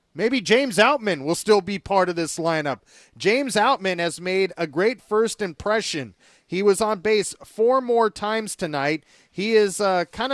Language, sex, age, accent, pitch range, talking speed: English, male, 30-49, American, 170-220 Hz, 170 wpm